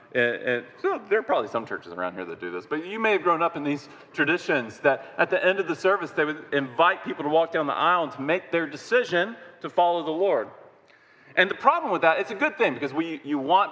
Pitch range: 135-180 Hz